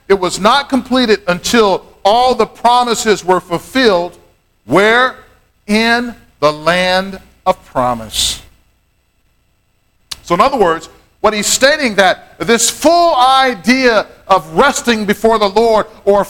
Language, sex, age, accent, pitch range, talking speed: English, male, 50-69, American, 175-225 Hz, 120 wpm